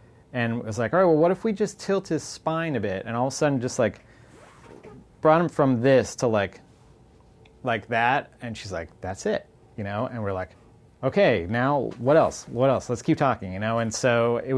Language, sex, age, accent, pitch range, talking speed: English, male, 30-49, American, 105-135 Hz, 225 wpm